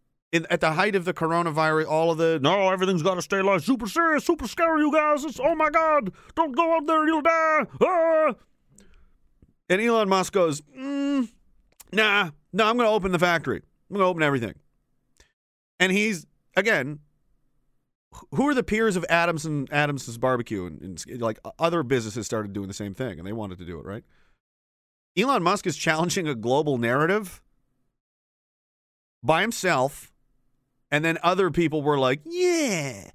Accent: American